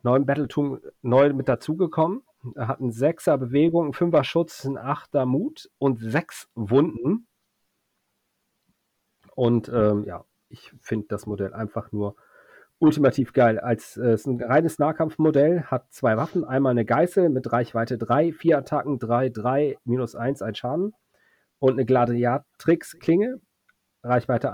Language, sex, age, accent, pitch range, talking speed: German, male, 40-59, German, 115-150 Hz, 135 wpm